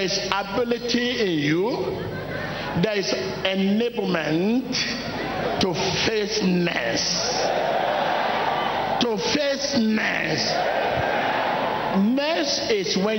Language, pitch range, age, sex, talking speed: English, 195-260 Hz, 50-69, male, 70 wpm